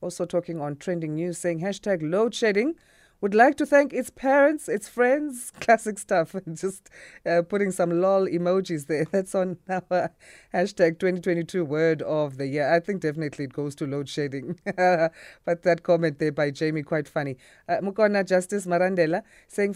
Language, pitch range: English, 155-195 Hz